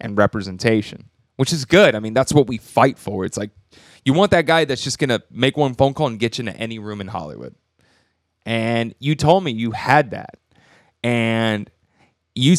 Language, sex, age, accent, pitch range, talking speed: English, male, 20-39, American, 115-150 Hz, 205 wpm